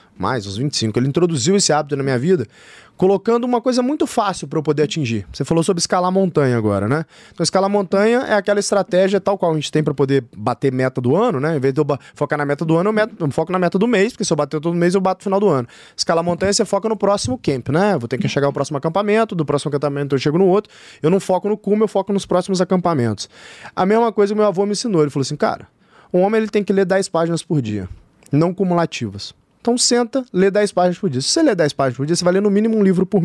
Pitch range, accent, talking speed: 150-210 Hz, Brazilian, 275 wpm